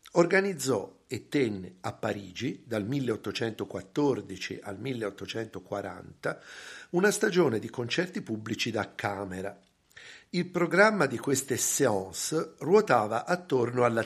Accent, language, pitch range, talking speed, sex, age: native, Italian, 105-145 Hz, 100 wpm, male, 50-69